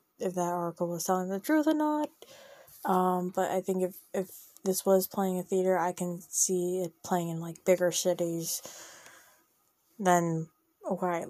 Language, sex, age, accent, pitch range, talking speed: English, female, 20-39, American, 175-195 Hz, 165 wpm